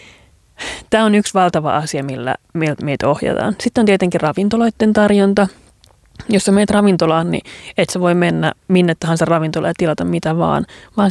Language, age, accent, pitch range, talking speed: Finnish, 30-49, native, 165-200 Hz, 160 wpm